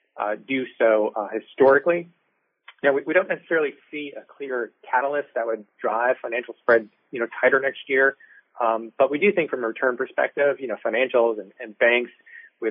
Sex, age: male, 30-49